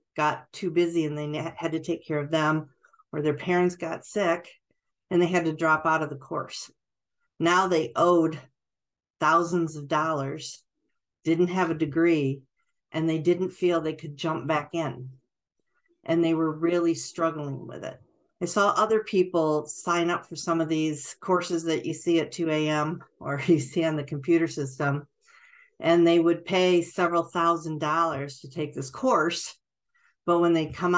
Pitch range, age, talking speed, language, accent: 150-175 Hz, 50-69, 170 wpm, English, American